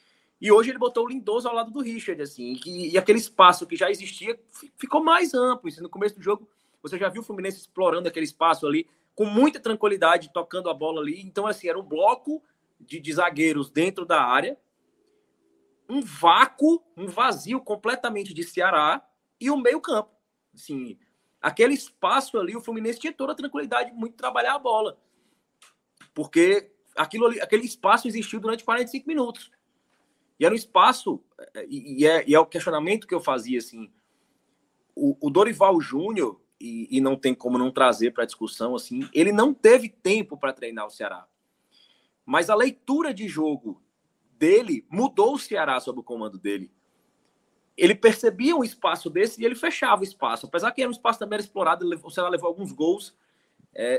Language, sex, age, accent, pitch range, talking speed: Portuguese, male, 20-39, Brazilian, 165-250 Hz, 180 wpm